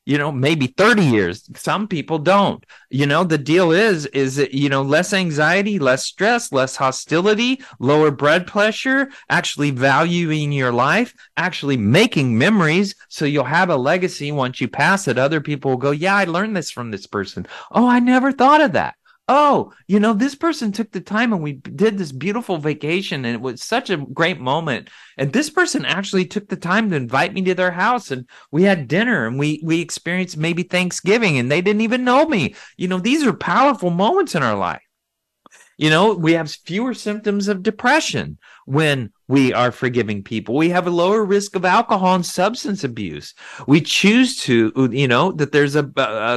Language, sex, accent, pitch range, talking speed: English, male, American, 140-200 Hz, 195 wpm